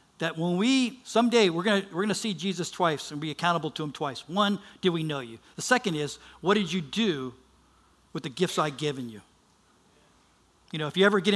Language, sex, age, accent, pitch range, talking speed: English, male, 50-69, American, 150-190 Hz, 220 wpm